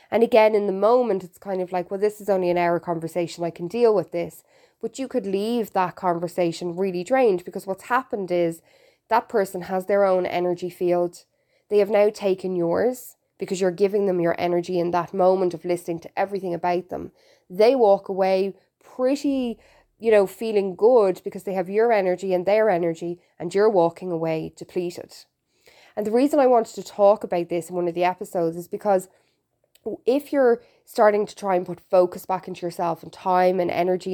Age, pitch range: 20-39, 175-205 Hz